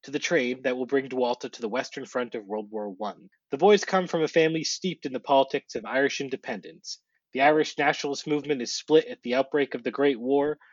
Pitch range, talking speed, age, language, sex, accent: 130-160 Hz, 230 wpm, 30-49, English, male, American